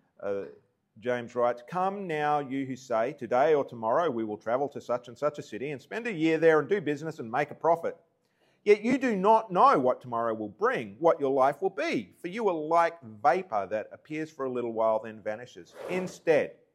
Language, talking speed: English, 215 wpm